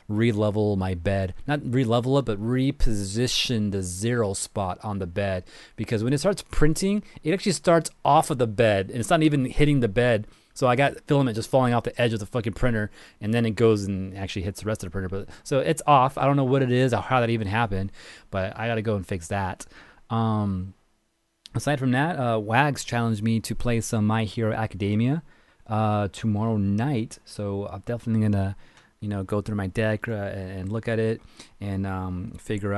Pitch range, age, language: 100-125 Hz, 30-49, English